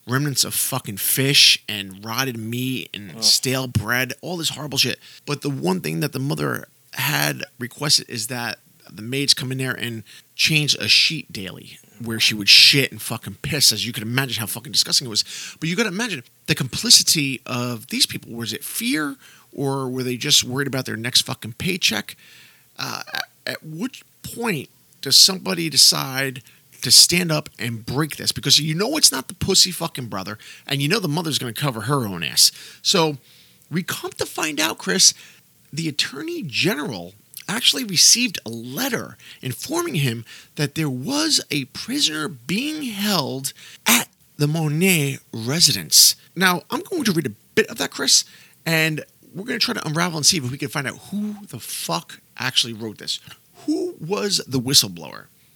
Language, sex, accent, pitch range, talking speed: English, male, American, 125-170 Hz, 180 wpm